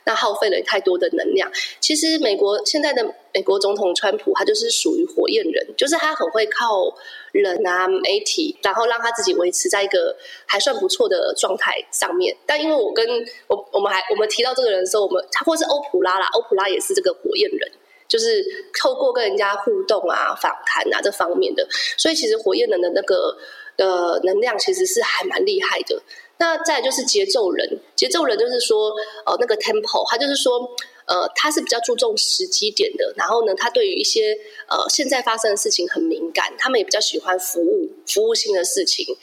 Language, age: Chinese, 20-39